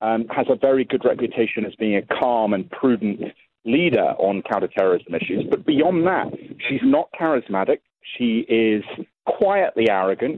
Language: English